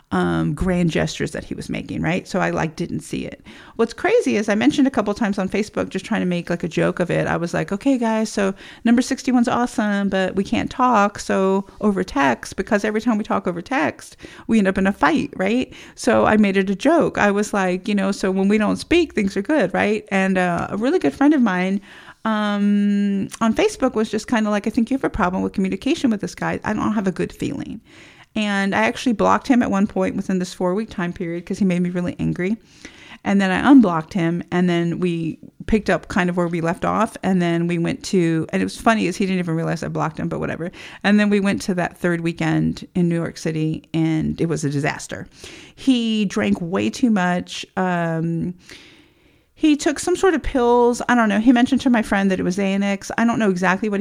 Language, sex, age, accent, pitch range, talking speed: English, female, 40-59, American, 175-220 Hz, 240 wpm